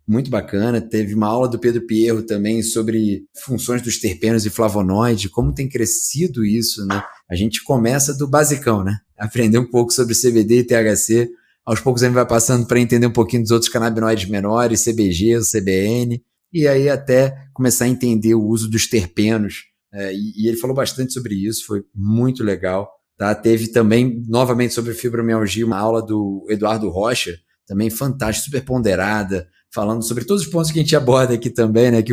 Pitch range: 105-130 Hz